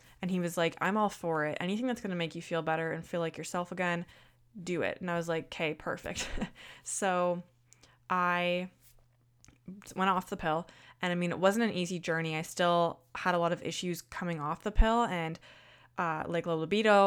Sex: female